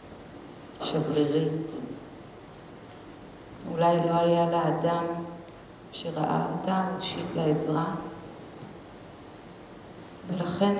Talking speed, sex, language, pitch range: 55 wpm, female, Hebrew, 155-170 Hz